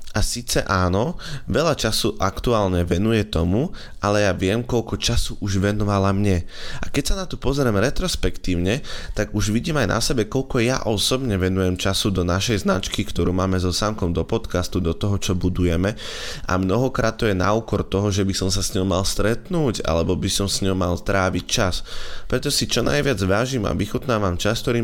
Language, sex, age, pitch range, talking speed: Slovak, male, 20-39, 90-115 Hz, 190 wpm